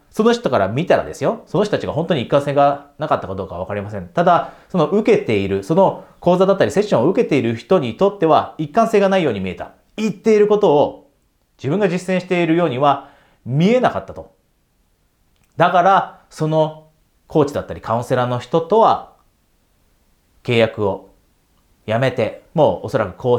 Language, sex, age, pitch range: Japanese, male, 30-49, 110-165 Hz